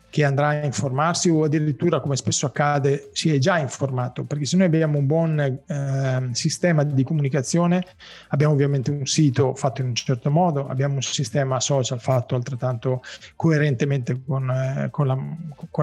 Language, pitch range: Italian, 135-165 Hz